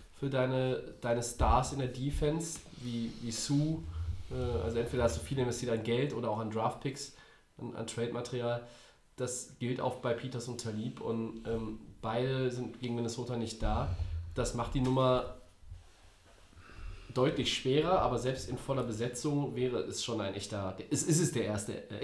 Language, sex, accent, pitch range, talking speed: German, male, German, 115-145 Hz, 170 wpm